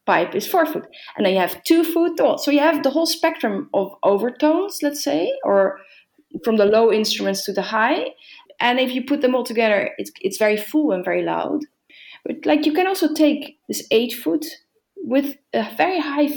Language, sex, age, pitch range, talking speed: English, female, 30-49, 200-305 Hz, 205 wpm